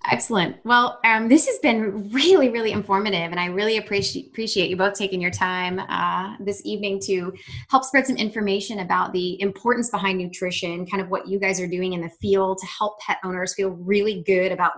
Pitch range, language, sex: 175-205 Hz, English, female